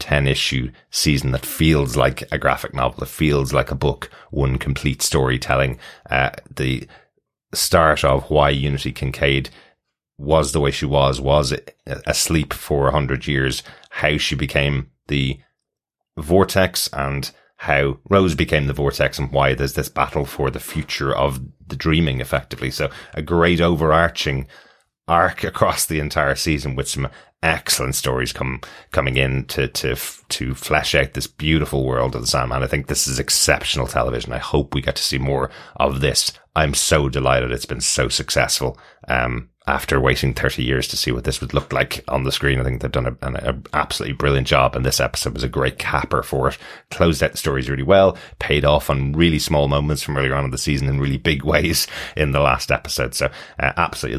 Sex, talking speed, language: male, 185 wpm, English